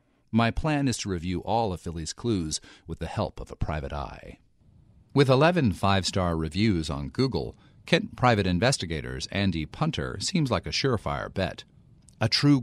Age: 40-59